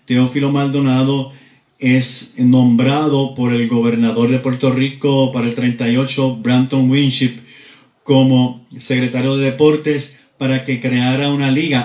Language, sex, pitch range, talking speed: Spanish, male, 125-140 Hz, 120 wpm